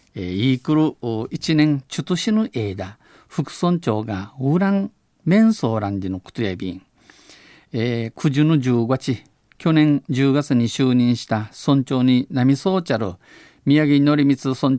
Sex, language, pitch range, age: male, Japanese, 115-155 Hz, 50-69